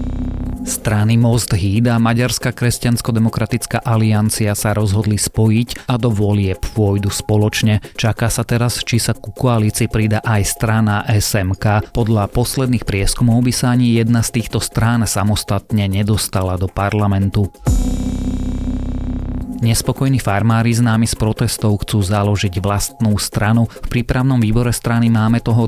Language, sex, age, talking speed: Slovak, male, 30-49, 125 wpm